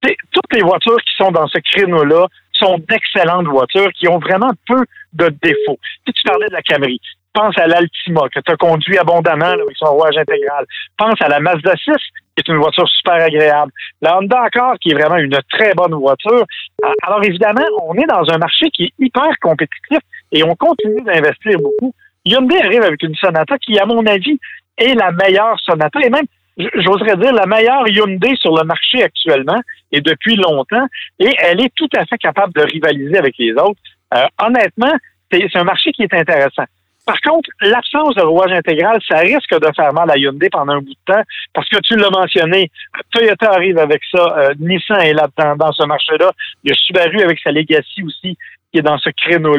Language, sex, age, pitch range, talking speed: French, male, 50-69, 155-230 Hz, 205 wpm